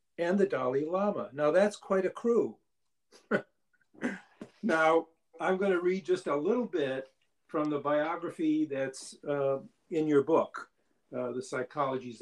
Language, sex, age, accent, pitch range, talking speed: English, male, 50-69, American, 140-185 Hz, 140 wpm